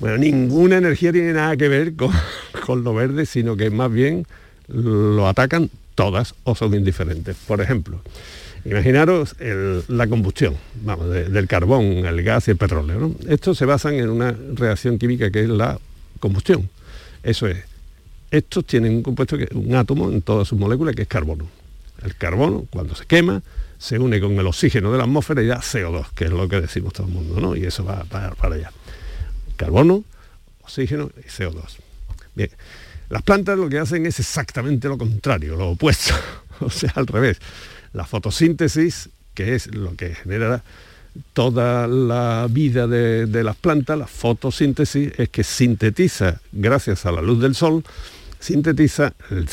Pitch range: 95-135 Hz